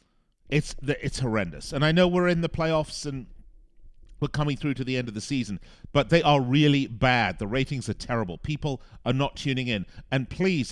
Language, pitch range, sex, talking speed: English, 110-155 Hz, male, 205 wpm